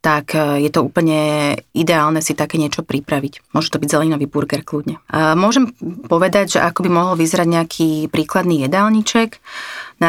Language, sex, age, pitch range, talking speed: Slovak, female, 30-49, 155-175 Hz, 155 wpm